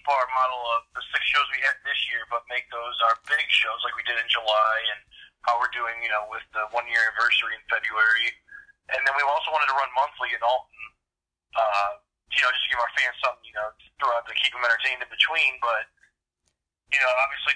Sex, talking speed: male, 220 wpm